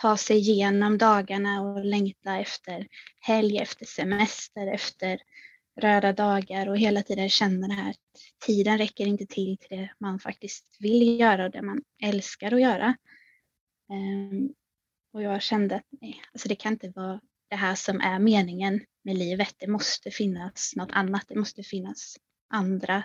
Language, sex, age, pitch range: Swedish, female, 20-39, 195-220 Hz